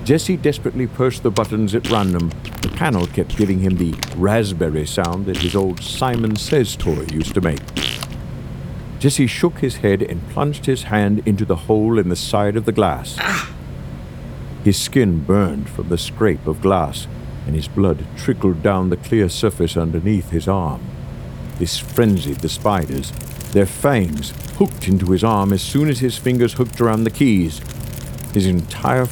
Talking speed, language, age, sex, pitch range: 165 wpm, English, 60-79, male, 90-125 Hz